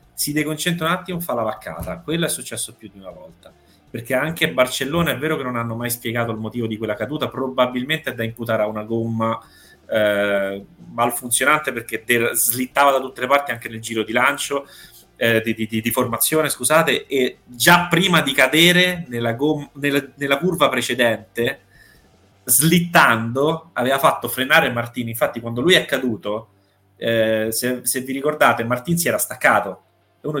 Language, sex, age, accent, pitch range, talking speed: Italian, male, 30-49, native, 115-140 Hz, 175 wpm